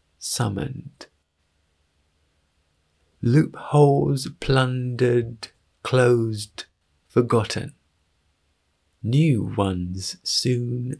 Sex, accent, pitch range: male, British, 70-115 Hz